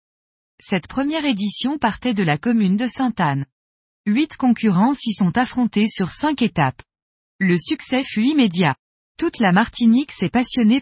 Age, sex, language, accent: 20-39, female, French, French